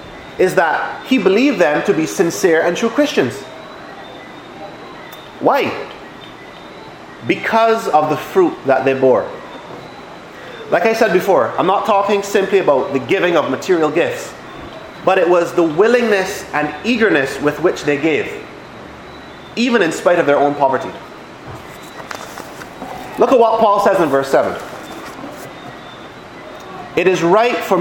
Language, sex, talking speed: English, male, 135 wpm